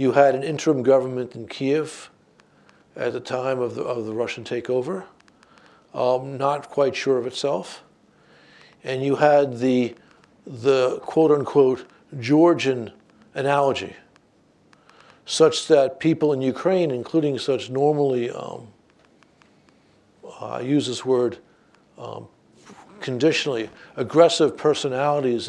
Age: 60-79